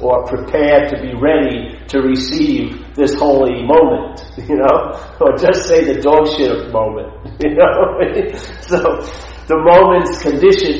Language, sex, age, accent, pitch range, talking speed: English, male, 50-69, American, 110-150 Hz, 140 wpm